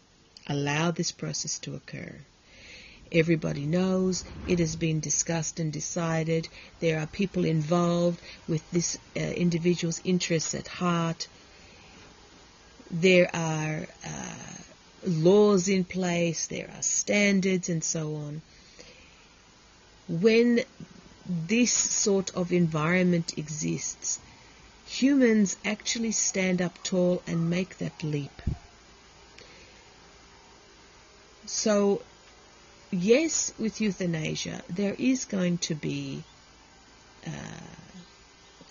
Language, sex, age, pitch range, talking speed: English, female, 40-59, 155-185 Hz, 95 wpm